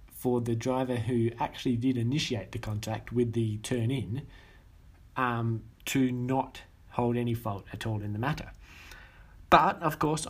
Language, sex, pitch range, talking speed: English, male, 110-130 Hz, 155 wpm